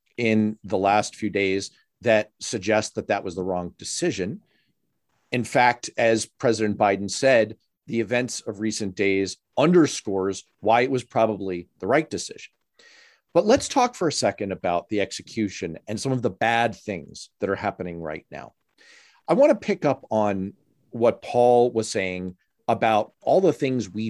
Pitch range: 100-135 Hz